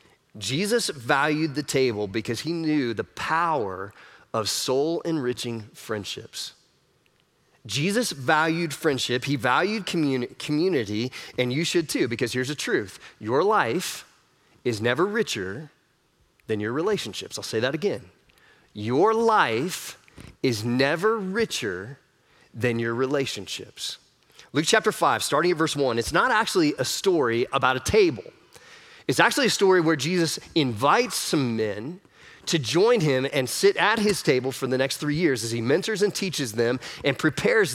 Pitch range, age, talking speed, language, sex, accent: 125-180 Hz, 30-49, 145 wpm, English, male, American